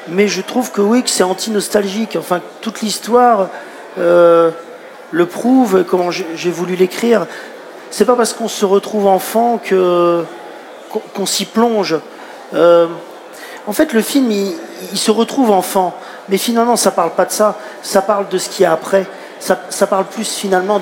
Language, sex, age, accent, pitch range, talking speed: French, male, 40-59, French, 175-205 Hz, 175 wpm